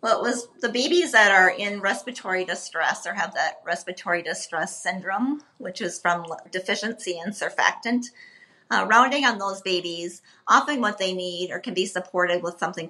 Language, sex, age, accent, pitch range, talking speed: English, female, 40-59, American, 175-215 Hz, 170 wpm